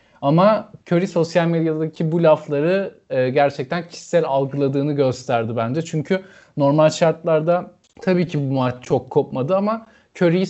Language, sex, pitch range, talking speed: Turkish, male, 130-165 Hz, 130 wpm